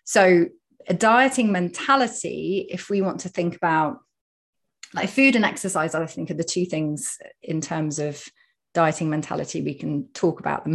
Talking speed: 165 wpm